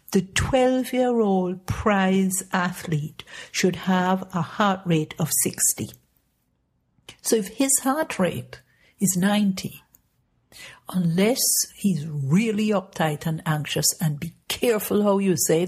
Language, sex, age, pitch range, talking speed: English, female, 60-79, 160-195 Hz, 115 wpm